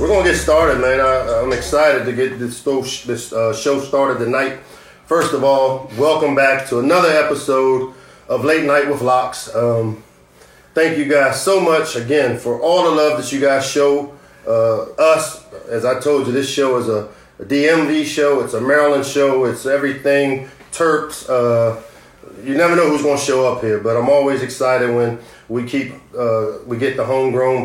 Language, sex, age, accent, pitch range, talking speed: English, male, 40-59, American, 120-140 Hz, 185 wpm